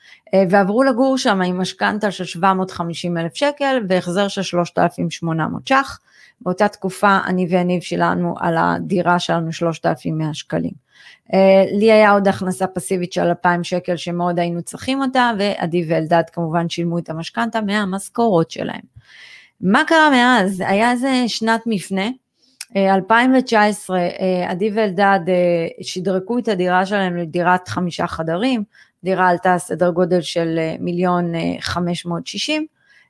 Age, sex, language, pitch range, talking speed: 30-49, female, Hebrew, 175-215 Hz, 120 wpm